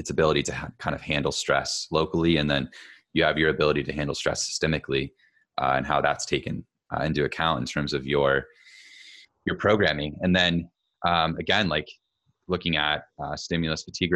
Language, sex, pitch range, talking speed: English, male, 70-80 Hz, 180 wpm